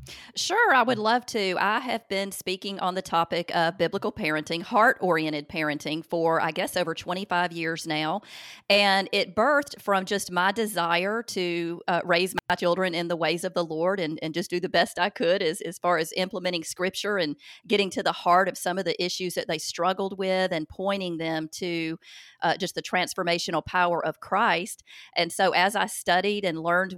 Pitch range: 165-190 Hz